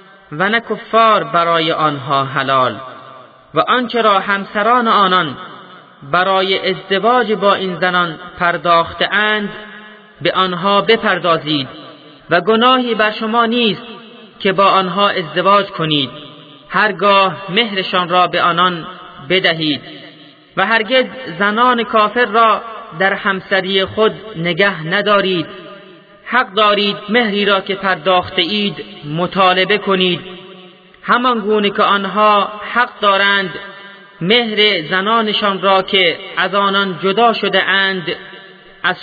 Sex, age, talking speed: male, 30-49, 110 wpm